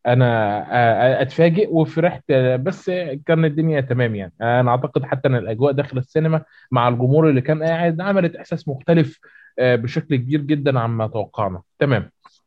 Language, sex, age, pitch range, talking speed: Arabic, male, 20-39, 120-150 Hz, 140 wpm